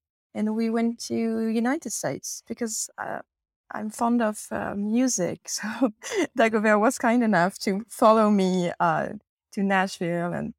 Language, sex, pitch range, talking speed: English, female, 180-230 Hz, 145 wpm